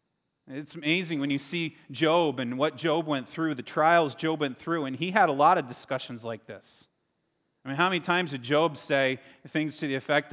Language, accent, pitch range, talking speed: English, American, 135-160 Hz, 215 wpm